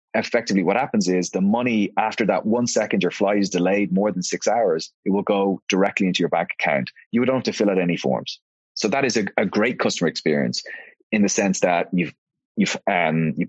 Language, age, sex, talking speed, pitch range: English, 30-49, male, 225 wpm, 90-110 Hz